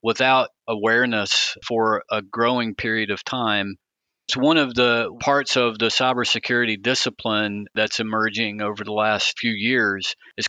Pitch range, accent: 110-125 Hz, American